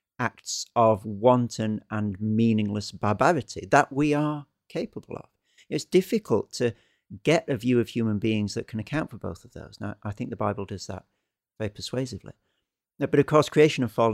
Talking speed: 180 wpm